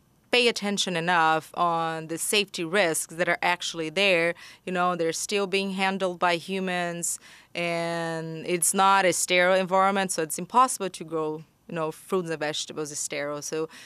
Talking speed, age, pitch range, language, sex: 165 wpm, 30-49, 160-195 Hz, English, female